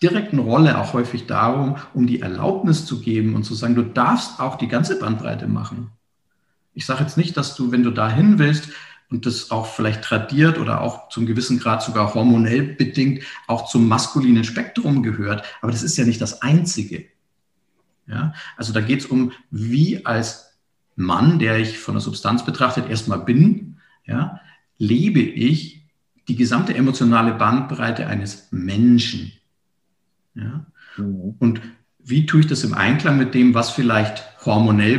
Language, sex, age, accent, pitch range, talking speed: German, male, 50-69, German, 110-145 Hz, 160 wpm